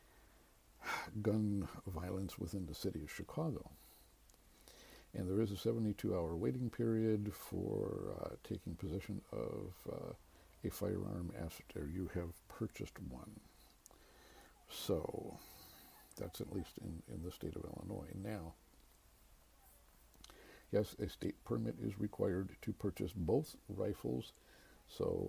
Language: English